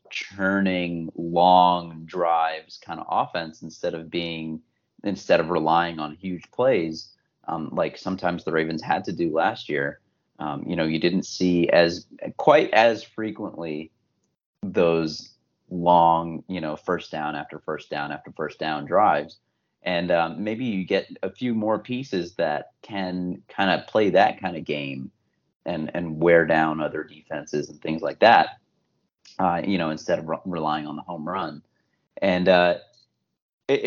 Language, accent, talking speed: English, American, 155 wpm